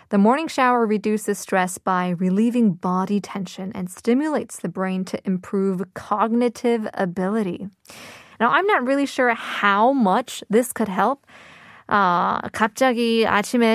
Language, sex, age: Korean, female, 20-39